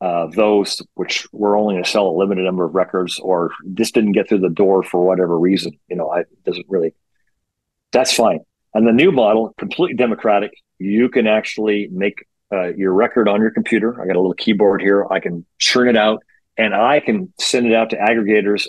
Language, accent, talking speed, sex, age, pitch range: English, American, 210 wpm, male, 40-59, 95-115 Hz